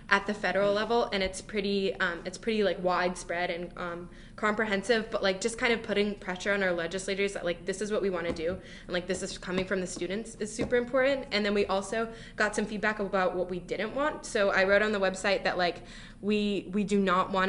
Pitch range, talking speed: 180-205 Hz, 240 wpm